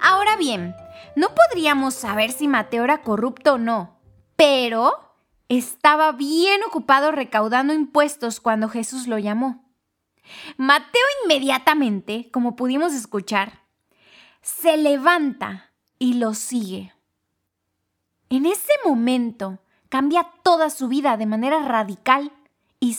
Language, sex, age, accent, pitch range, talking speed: Spanish, female, 20-39, Mexican, 230-305 Hz, 110 wpm